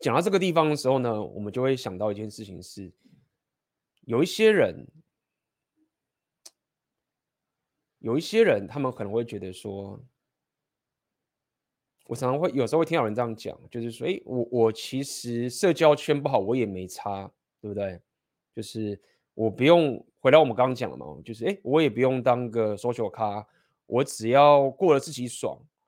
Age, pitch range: 20-39, 105-135 Hz